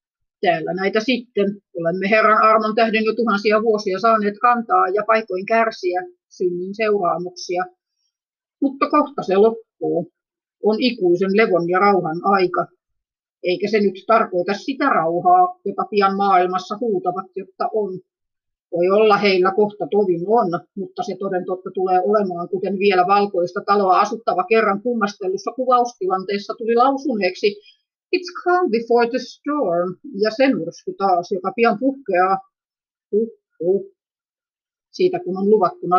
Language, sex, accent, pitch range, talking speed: Finnish, female, native, 185-240 Hz, 130 wpm